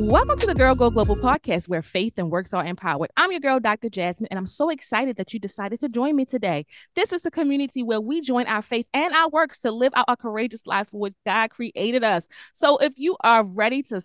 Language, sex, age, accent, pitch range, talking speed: English, female, 20-39, American, 210-270 Hz, 250 wpm